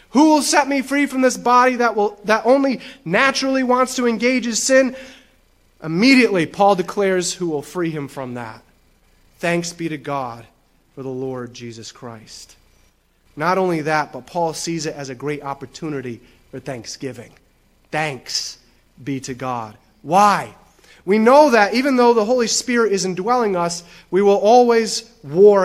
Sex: male